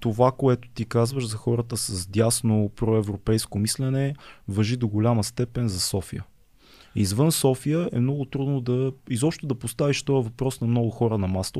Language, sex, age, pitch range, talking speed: Bulgarian, male, 20-39, 105-140 Hz, 165 wpm